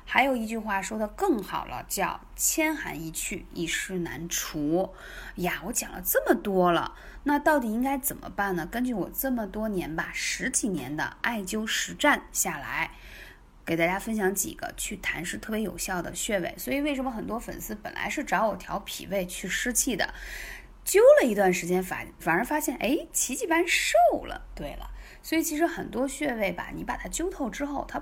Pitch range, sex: 185-270 Hz, female